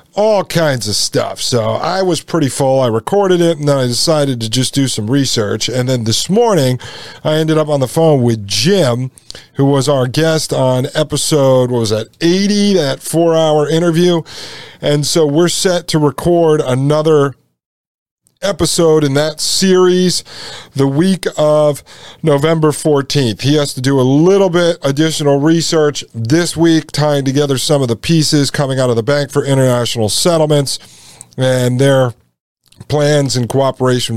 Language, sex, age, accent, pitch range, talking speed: English, male, 40-59, American, 120-155 Hz, 160 wpm